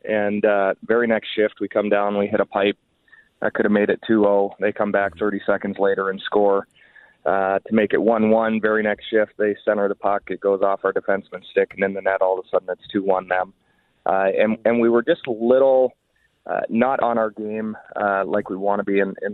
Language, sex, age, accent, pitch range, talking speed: English, male, 30-49, American, 100-110 Hz, 235 wpm